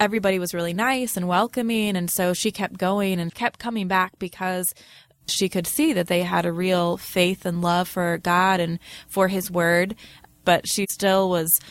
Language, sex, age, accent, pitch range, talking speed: English, female, 20-39, American, 180-205 Hz, 190 wpm